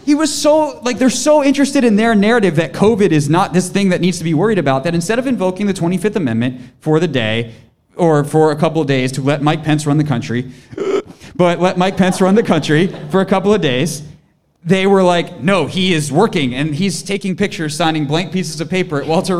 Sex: male